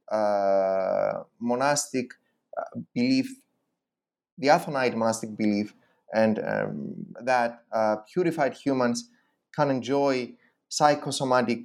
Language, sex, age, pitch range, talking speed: English, male, 30-49, 115-160 Hz, 90 wpm